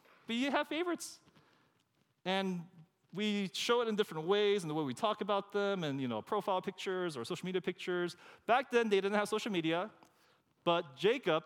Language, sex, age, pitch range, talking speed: English, male, 30-49, 135-190 Hz, 190 wpm